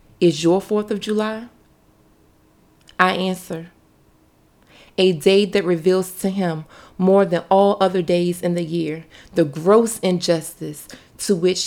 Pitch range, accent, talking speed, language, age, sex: 165-190 Hz, American, 135 wpm, English, 30-49, female